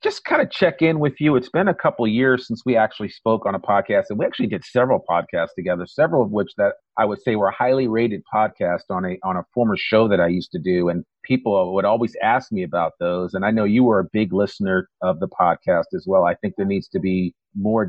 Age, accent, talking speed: 40-59, American, 260 wpm